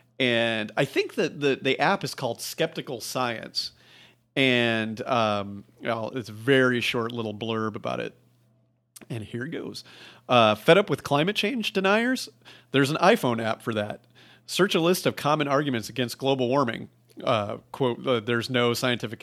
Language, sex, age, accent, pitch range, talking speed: English, male, 40-59, American, 115-135 Hz, 165 wpm